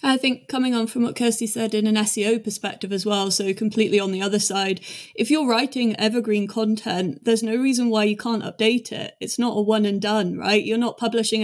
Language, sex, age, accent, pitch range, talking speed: English, female, 20-39, British, 200-230 Hz, 225 wpm